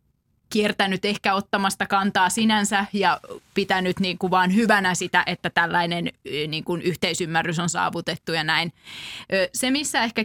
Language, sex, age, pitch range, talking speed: Finnish, female, 20-39, 180-205 Hz, 115 wpm